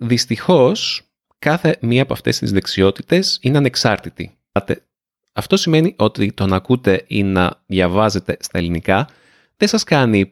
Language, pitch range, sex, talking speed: Greek, 90-130 Hz, male, 135 wpm